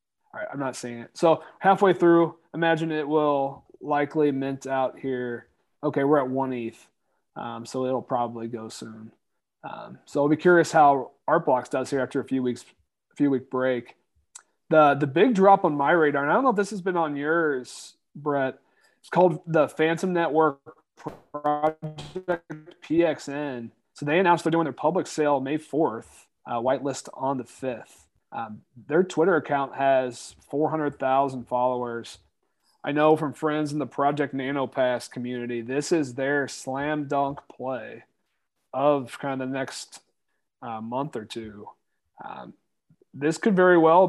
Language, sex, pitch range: English, male, 130-160 Hz